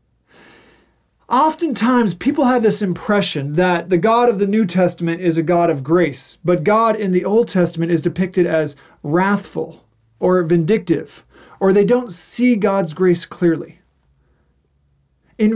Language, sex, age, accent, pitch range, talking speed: English, male, 40-59, American, 150-200 Hz, 145 wpm